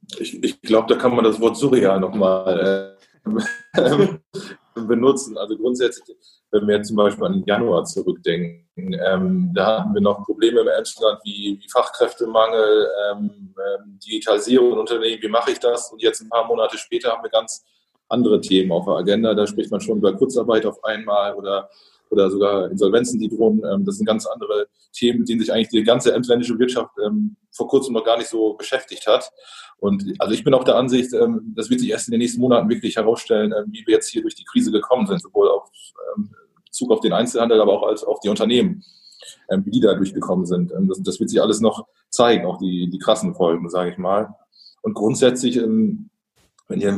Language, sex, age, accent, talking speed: German, male, 20-39, German, 205 wpm